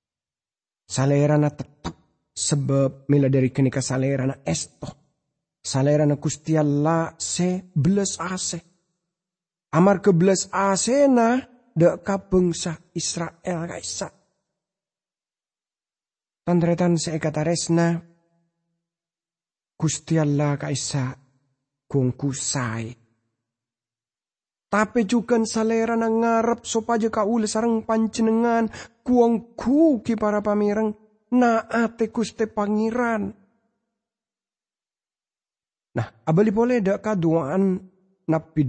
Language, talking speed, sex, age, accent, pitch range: English, 80 wpm, male, 40-59, Indonesian, 140-215 Hz